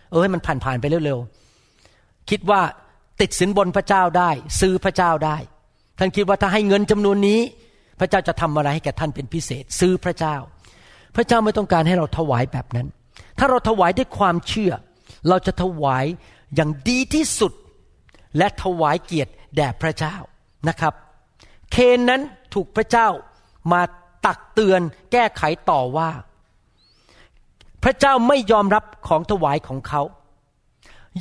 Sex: male